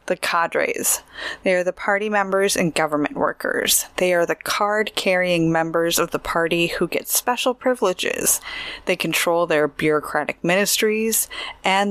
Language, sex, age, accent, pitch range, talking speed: English, female, 20-39, American, 155-215 Hz, 140 wpm